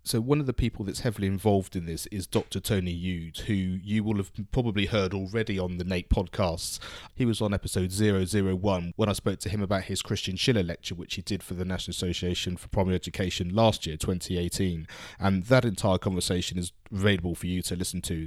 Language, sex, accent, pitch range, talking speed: English, male, British, 90-105 Hz, 215 wpm